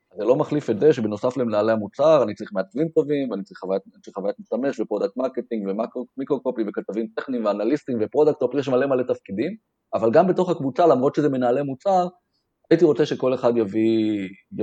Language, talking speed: Hebrew, 170 wpm